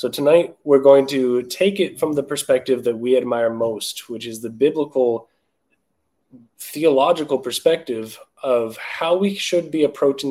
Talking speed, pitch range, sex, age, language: 150 wpm, 120-155 Hz, male, 20-39, English